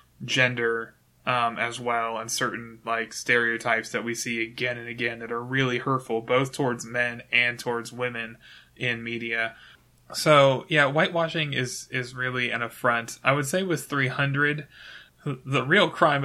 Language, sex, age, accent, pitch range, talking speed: English, male, 20-39, American, 115-130 Hz, 155 wpm